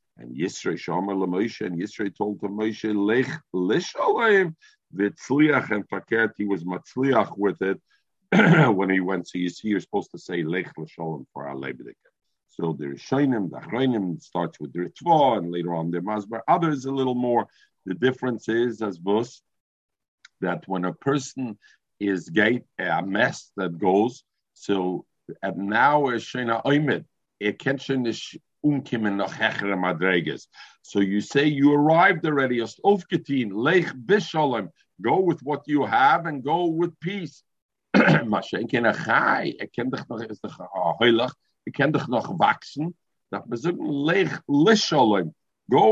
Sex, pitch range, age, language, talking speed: male, 95-155 Hz, 50-69, English, 145 wpm